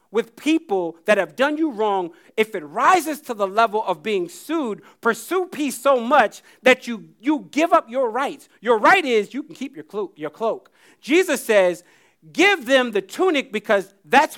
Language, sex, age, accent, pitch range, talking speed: English, male, 40-59, American, 195-275 Hz, 180 wpm